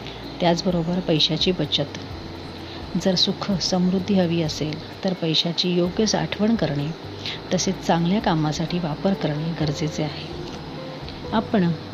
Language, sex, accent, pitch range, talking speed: Marathi, female, native, 155-190 Hz, 105 wpm